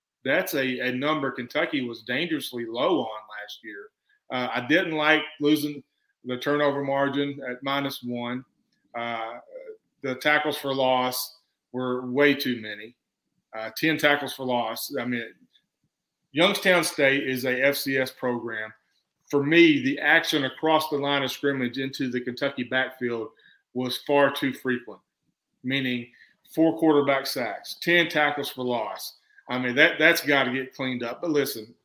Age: 40-59